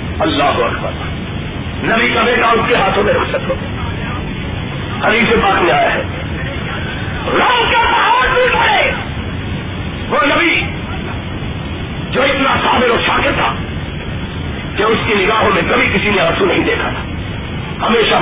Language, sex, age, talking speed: Urdu, male, 50-69, 130 wpm